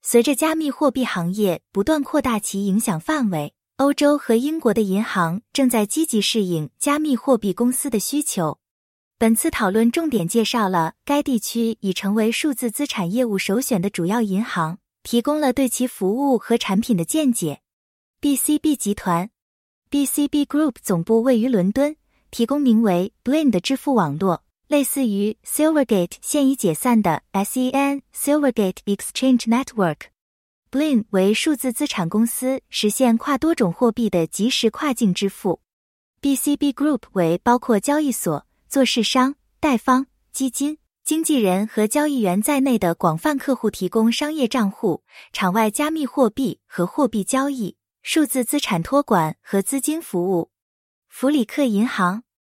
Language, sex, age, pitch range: English, female, 20-39, 200-280 Hz